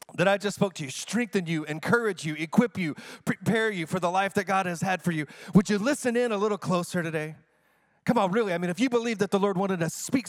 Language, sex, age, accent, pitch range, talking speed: English, male, 30-49, American, 160-195 Hz, 260 wpm